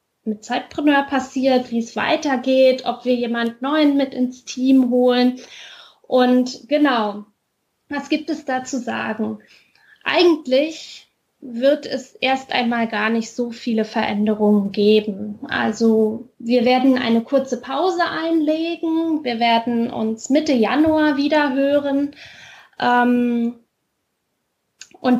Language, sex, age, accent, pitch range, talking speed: German, female, 10-29, German, 230-275 Hz, 115 wpm